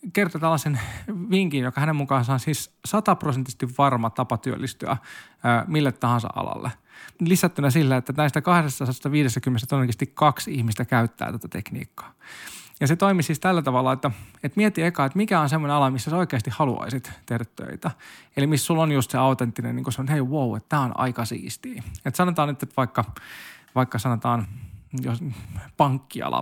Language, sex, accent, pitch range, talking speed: Finnish, male, native, 125-165 Hz, 165 wpm